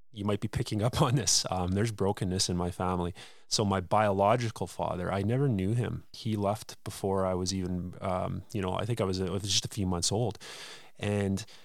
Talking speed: 205 wpm